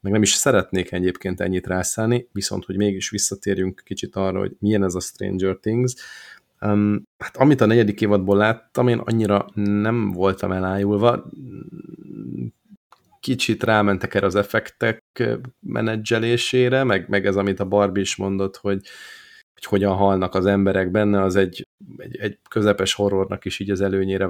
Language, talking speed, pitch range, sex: Hungarian, 155 wpm, 95-110 Hz, male